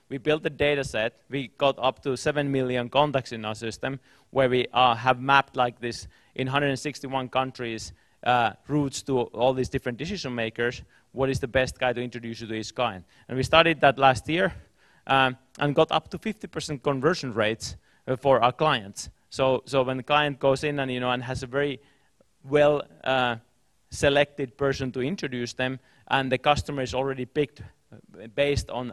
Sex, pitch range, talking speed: male, 125-145 Hz, 190 wpm